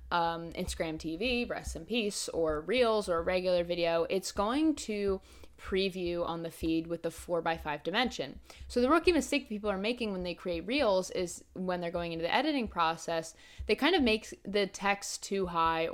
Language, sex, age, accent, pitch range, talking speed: English, female, 20-39, American, 165-220 Hz, 195 wpm